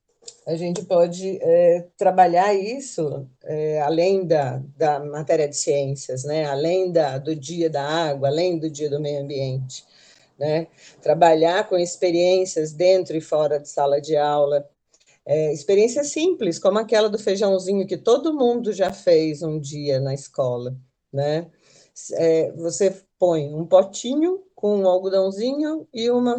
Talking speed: 135 wpm